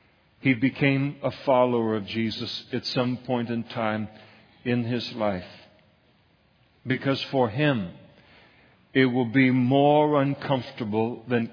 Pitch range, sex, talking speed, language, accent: 115-130 Hz, male, 120 wpm, English, American